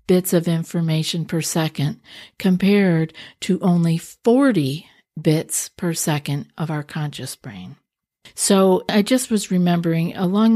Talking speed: 125 wpm